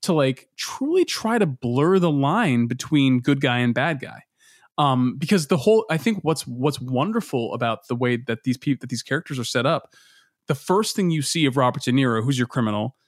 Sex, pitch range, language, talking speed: male, 125-150 Hz, English, 215 wpm